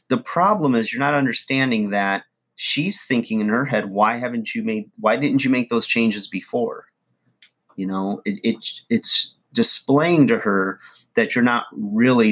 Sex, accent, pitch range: male, American, 105-145 Hz